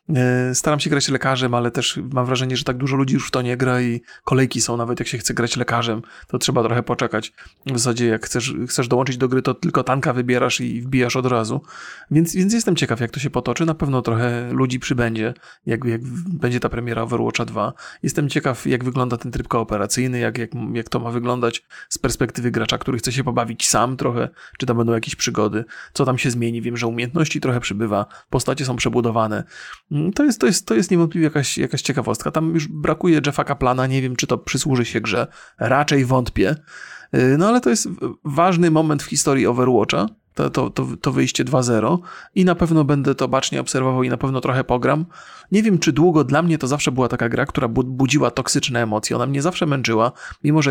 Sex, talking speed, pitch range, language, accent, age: male, 210 wpm, 120-145 Hz, Polish, native, 30-49